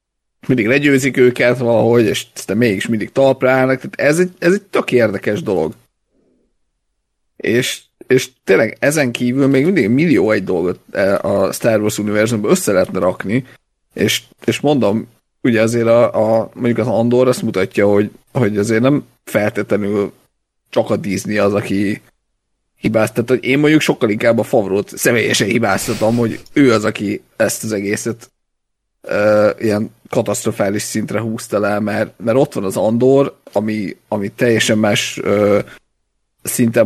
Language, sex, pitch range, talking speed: Hungarian, male, 105-125 Hz, 150 wpm